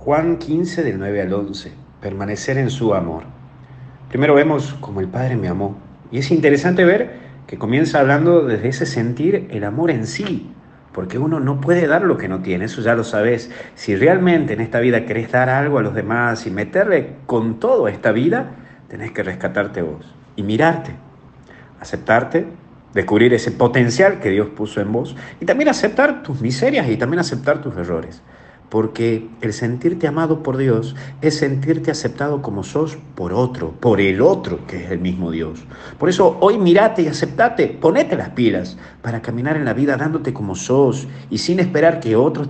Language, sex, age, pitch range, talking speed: Spanish, male, 50-69, 105-150 Hz, 185 wpm